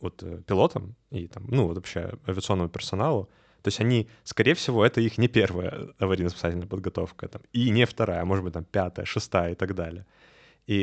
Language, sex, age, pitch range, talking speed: Russian, male, 20-39, 95-115 Hz, 195 wpm